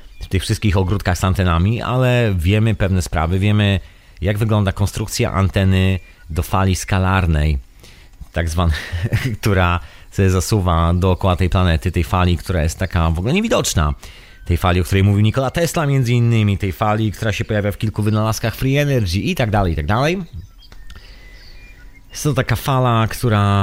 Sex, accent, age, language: male, native, 30-49, Polish